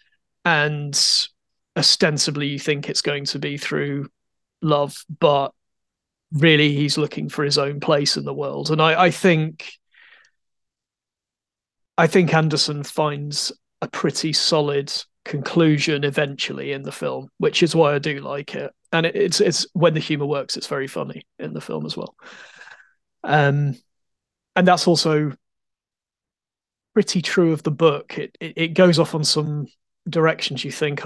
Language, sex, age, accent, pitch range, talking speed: English, male, 30-49, British, 145-160 Hz, 155 wpm